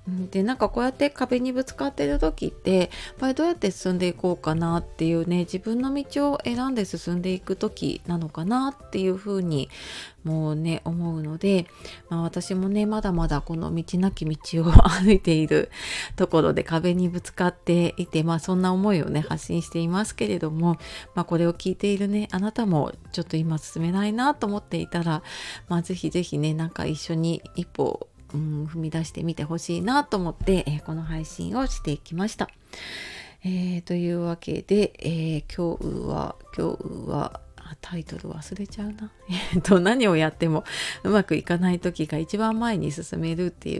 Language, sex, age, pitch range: Japanese, female, 30-49, 165-210 Hz